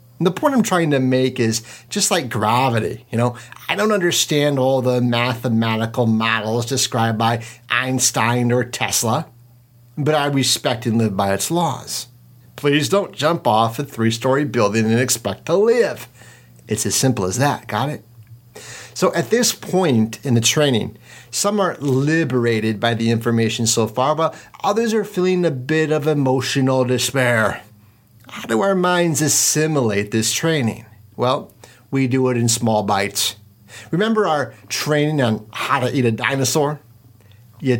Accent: American